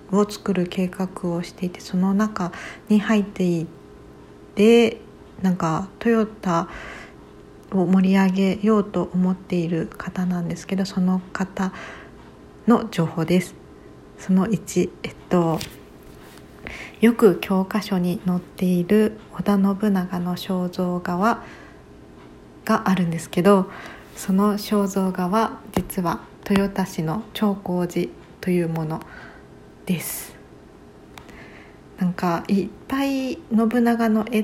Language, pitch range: Japanese, 175-210 Hz